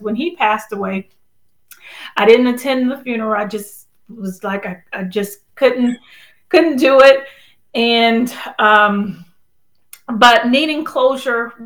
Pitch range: 200-245 Hz